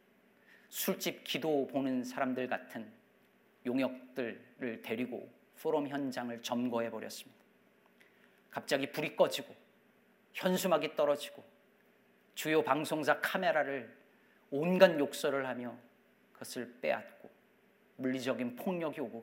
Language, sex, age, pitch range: Korean, male, 40-59, 130-210 Hz